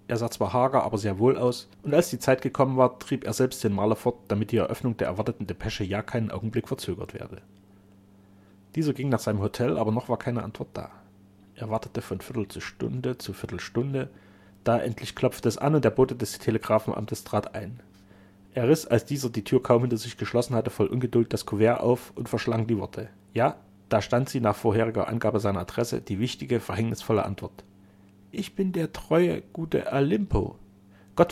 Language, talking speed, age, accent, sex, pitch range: German, 195 wpm, 30-49, German, male, 100-120 Hz